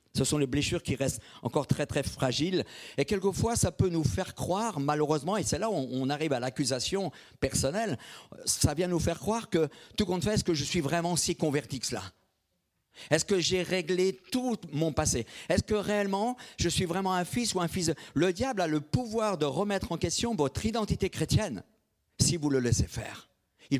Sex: male